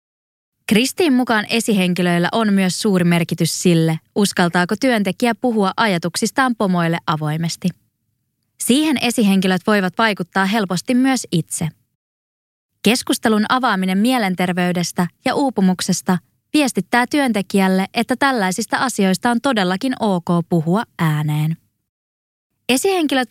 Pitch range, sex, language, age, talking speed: 175-240 Hz, female, Finnish, 20-39, 95 wpm